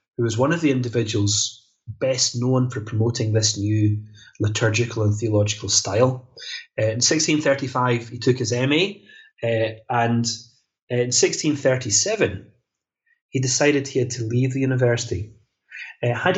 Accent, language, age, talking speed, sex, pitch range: British, English, 30-49, 125 wpm, male, 110-130 Hz